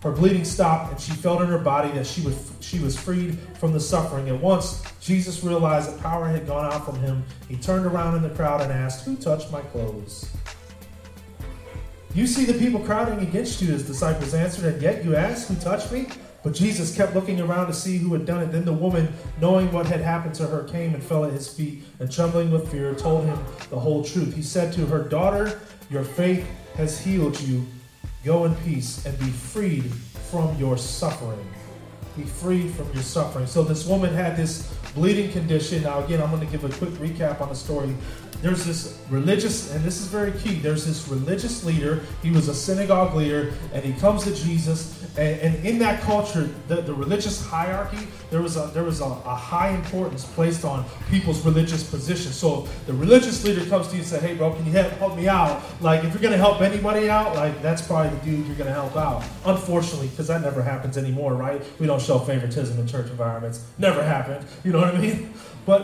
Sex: male